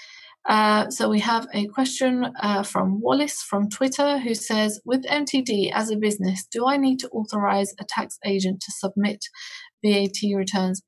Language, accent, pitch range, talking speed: English, British, 190-225 Hz, 165 wpm